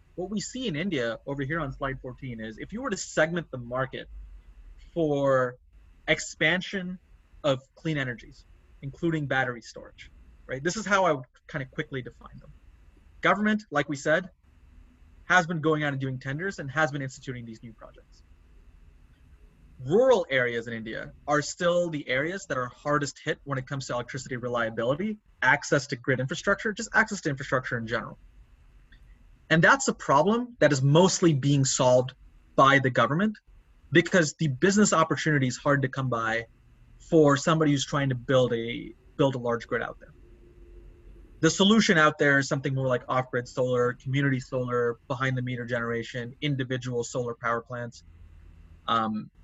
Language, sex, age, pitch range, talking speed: English, male, 30-49, 115-155 Hz, 165 wpm